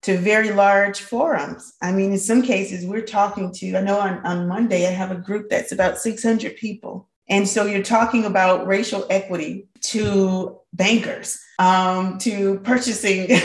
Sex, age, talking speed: female, 30-49, 165 wpm